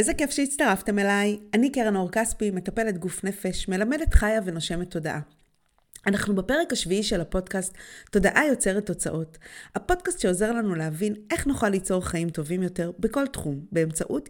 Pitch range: 155-215 Hz